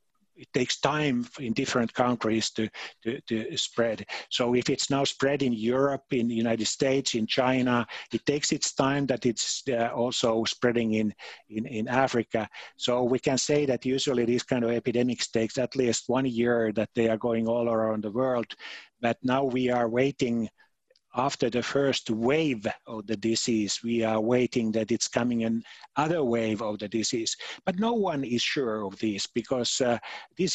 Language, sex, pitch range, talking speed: Swahili, male, 115-135 Hz, 180 wpm